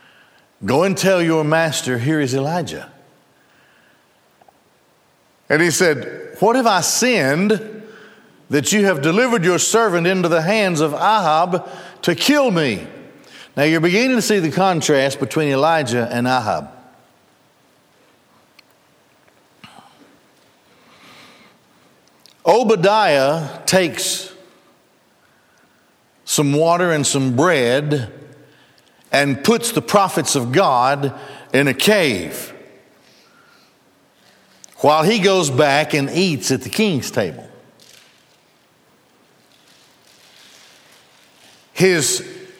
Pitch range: 145-195 Hz